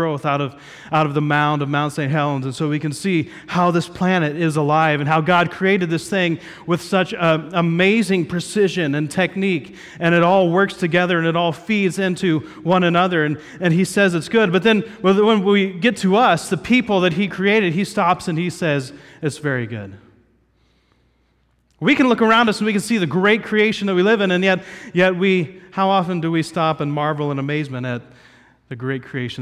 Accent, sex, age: American, male, 30-49